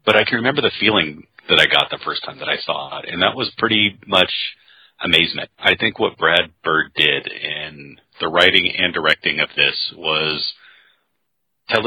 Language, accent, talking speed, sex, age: English, American, 185 wpm, male, 40-59